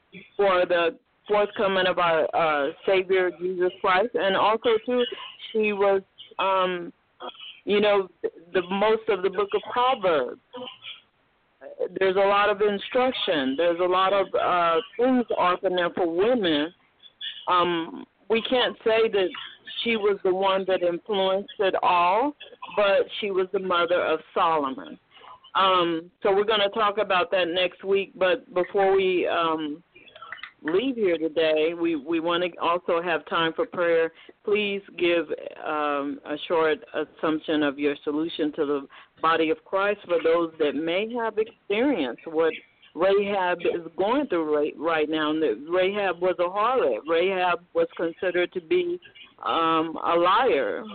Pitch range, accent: 165-215 Hz, American